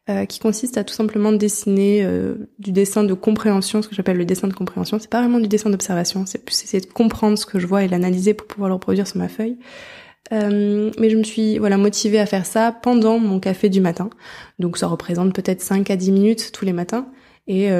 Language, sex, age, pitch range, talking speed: French, female, 20-39, 195-225 Hz, 235 wpm